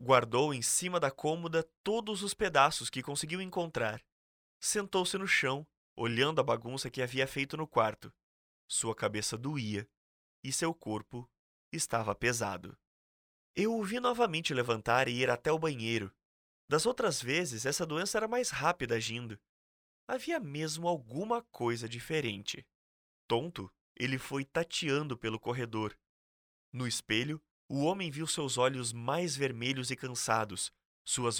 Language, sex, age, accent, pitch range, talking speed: Portuguese, male, 20-39, Brazilian, 115-165 Hz, 140 wpm